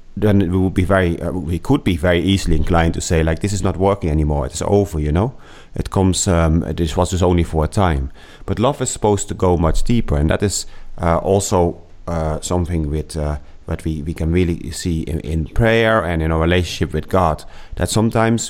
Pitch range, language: 80-105 Hz, English